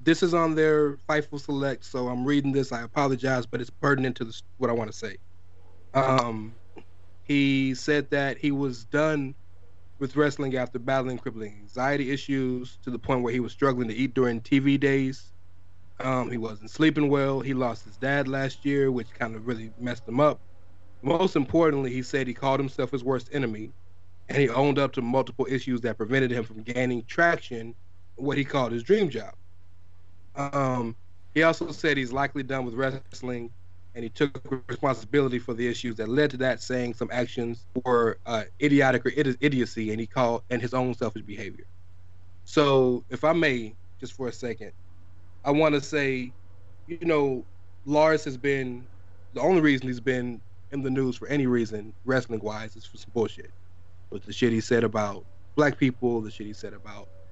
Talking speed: 185 wpm